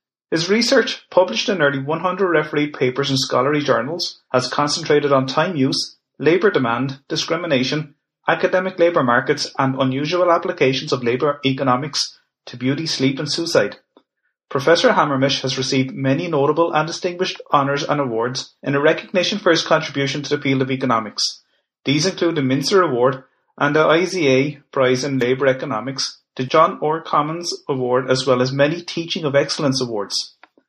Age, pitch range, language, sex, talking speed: 30-49, 130-165 Hz, English, male, 155 wpm